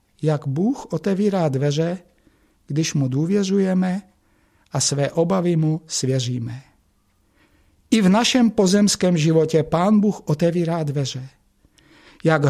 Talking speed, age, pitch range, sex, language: 105 wpm, 60-79, 140-190 Hz, male, Czech